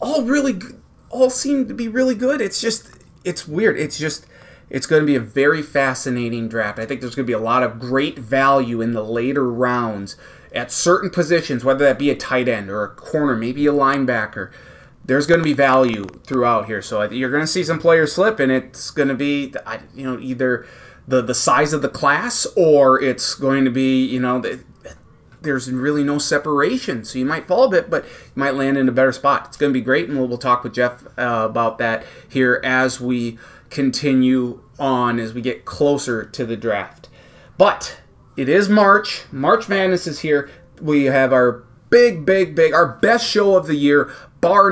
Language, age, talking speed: English, 30-49, 200 wpm